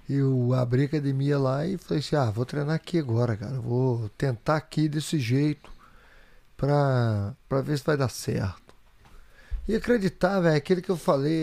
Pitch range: 135-185 Hz